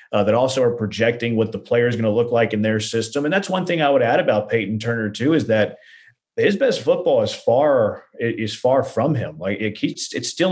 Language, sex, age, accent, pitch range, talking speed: English, male, 30-49, American, 110-125 Hz, 245 wpm